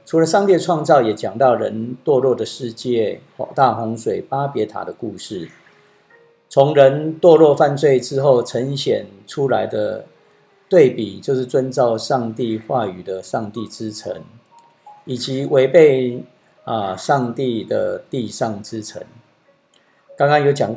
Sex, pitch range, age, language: male, 115-155 Hz, 50-69, Chinese